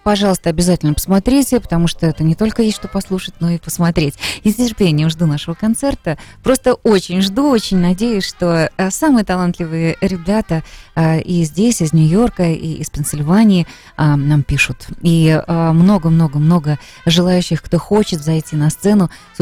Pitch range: 155-200 Hz